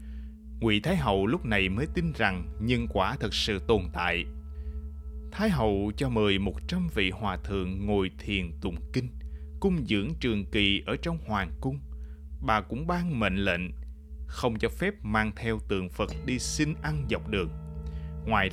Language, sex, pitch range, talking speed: Vietnamese, male, 75-115 Hz, 170 wpm